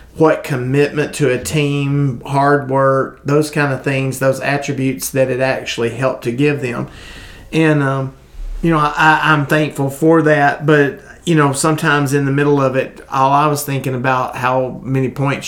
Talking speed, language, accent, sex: 180 wpm, English, American, male